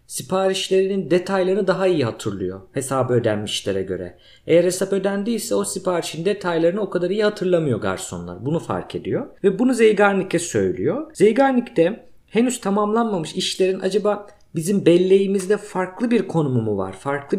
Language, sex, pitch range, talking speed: Turkish, male, 135-205 Hz, 140 wpm